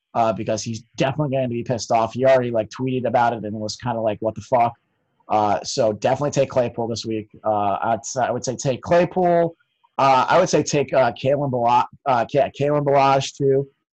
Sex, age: male, 30-49